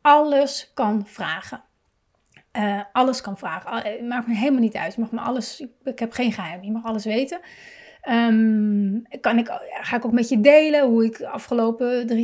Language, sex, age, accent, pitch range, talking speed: Dutch, female, 30-49, Dutch, 215-260 Hz, 155 wpm